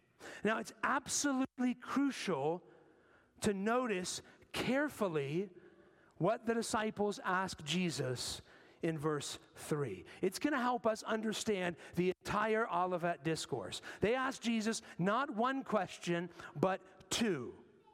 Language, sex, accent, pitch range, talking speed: English, male, American, 200-265 Hz, 110 wpm